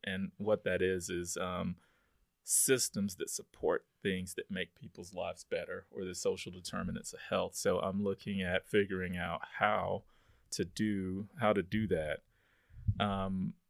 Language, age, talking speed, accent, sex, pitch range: English, 30-49, 155 wpm, American, male, 90-110 Hz